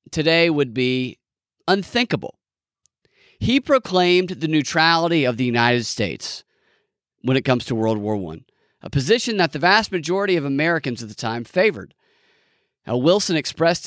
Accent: American